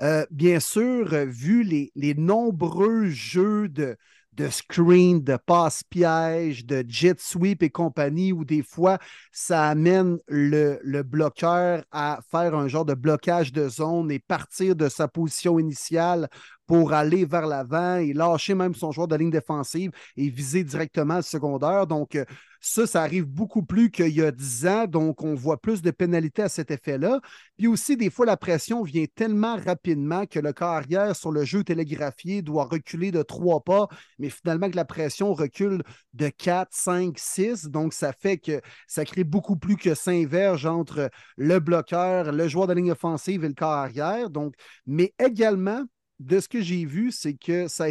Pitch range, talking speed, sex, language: 150-185 Hz, 180 wpm, male, French